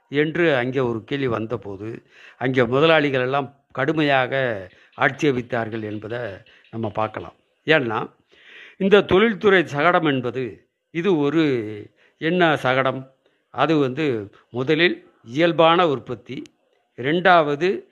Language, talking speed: Tamil, 95 wpm